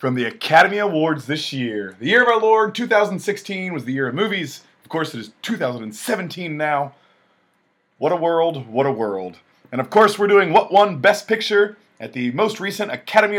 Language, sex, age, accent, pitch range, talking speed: English, male, 30-49, American, 130-190 Hz, 195 wpm